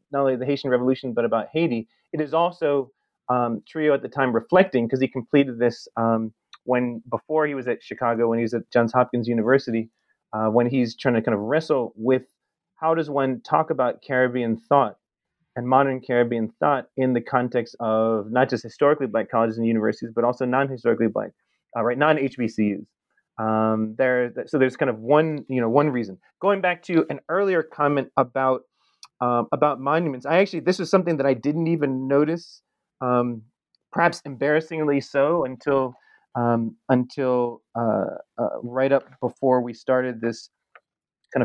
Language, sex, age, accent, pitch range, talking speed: English, male, 30-49, American, 120-150 Hz, 175 wpm